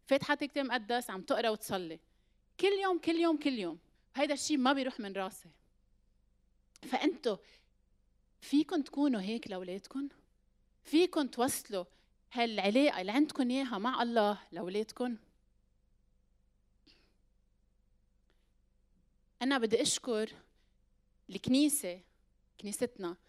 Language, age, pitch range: Arabic, 30-49, 180-260 Hz